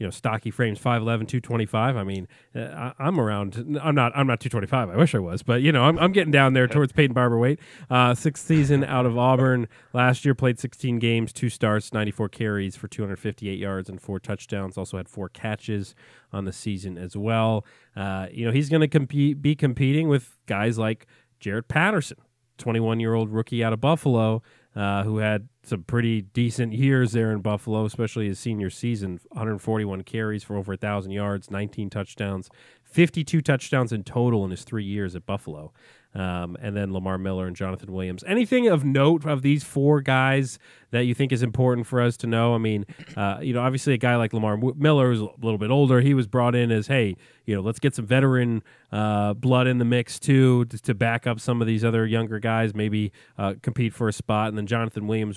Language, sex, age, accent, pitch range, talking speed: English, male, 30-49, American, 105-130 Hz, 220 wpm